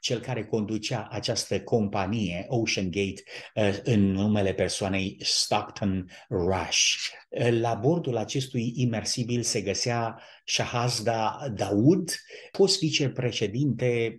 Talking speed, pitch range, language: 95 wpm, 110-140 Hz, Romanian